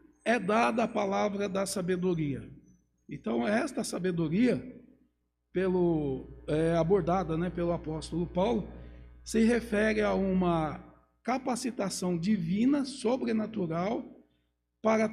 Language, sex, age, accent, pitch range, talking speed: Portuguese, male, 60-79, Brazilian, 170-230 Hz, 95 wpm